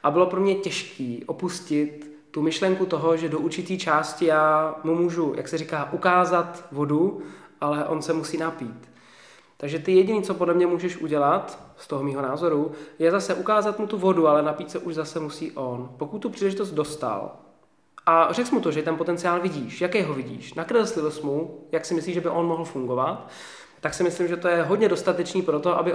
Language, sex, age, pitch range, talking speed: Czech, male, 20-39, 155-185 Hz, 205 wpm